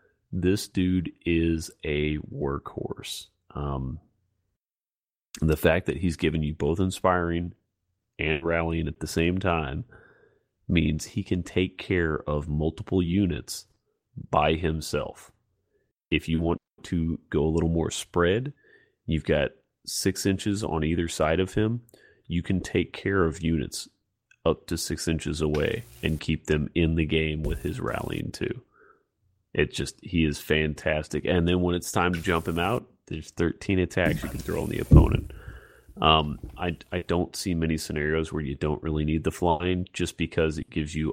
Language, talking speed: English, 160 wpm